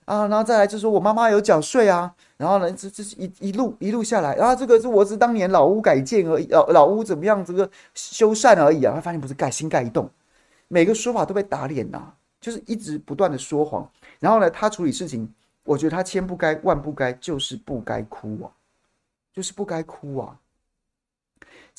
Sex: male